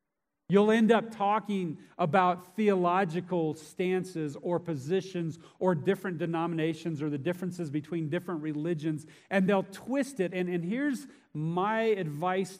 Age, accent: 40-59, American